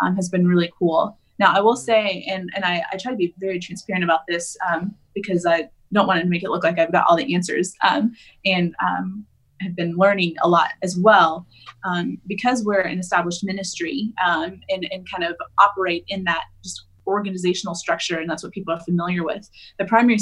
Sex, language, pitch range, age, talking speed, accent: female, English, 175-205 Hz, 20-39, 210 wpm, American